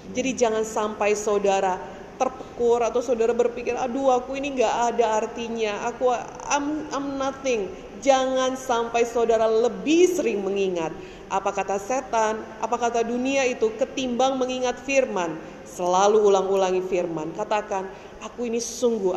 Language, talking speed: Indonesian, 125 wpm